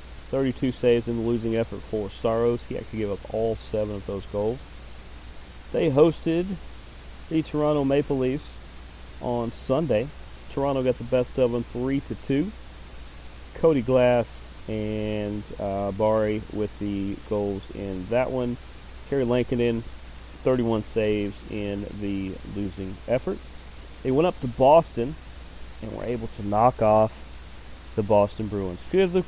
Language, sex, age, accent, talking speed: English, male, 40-59, American, 140 wpm